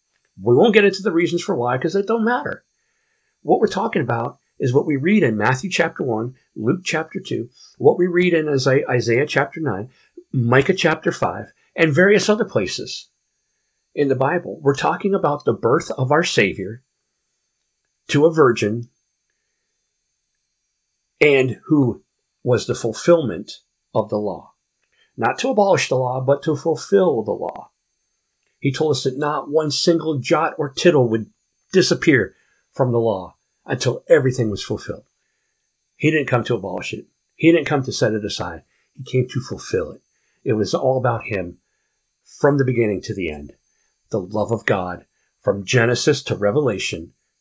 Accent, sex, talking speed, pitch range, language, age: American, male, 165 wpm, 120-180 Hz, English, 50-69